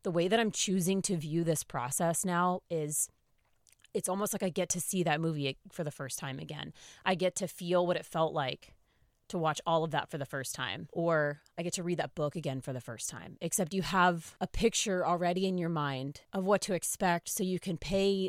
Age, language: 30-49, English